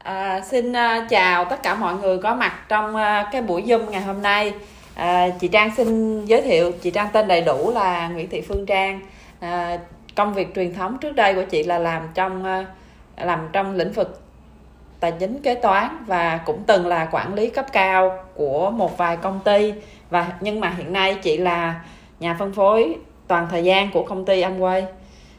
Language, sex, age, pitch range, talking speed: Vietnamese, female, 20-39, 175-205 Hz, 185 wpm